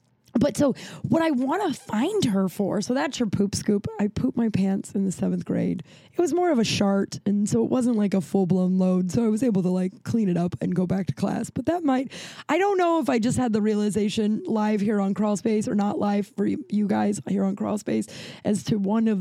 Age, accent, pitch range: 20-39, American, 195-265 Hz